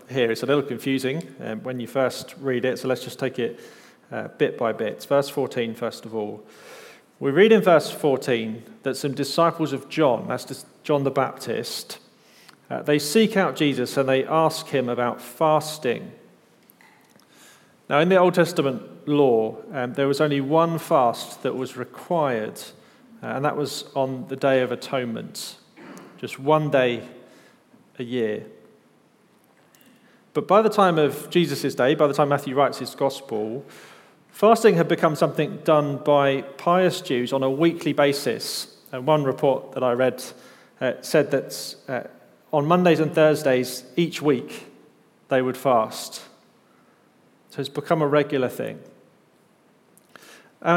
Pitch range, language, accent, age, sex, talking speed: 130-160 Hz, English, British, 40-59, male, 155 wpm